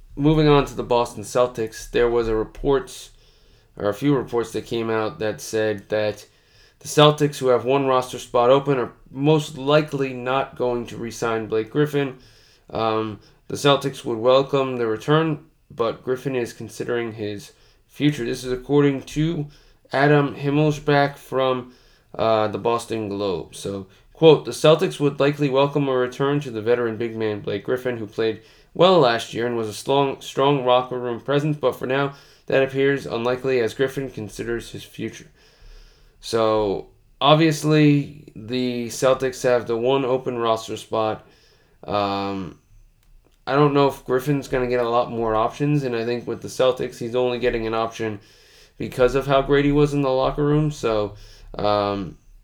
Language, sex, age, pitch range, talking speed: English, male, 20-39, 110-140 Hz, 170 wpm